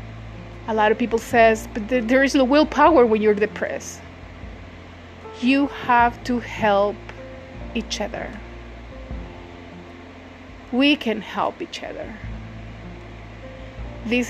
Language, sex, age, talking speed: English, female, 30-49, 105 wpm